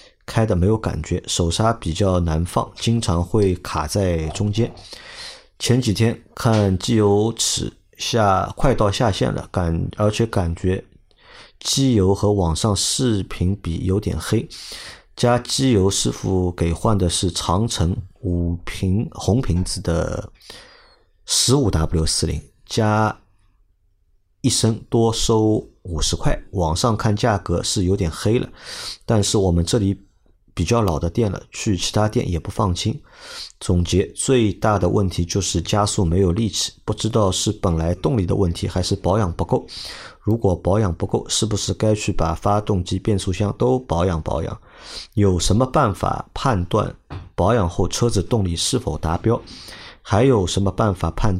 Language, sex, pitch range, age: Chinese, male, 90-110 Hz, 50-69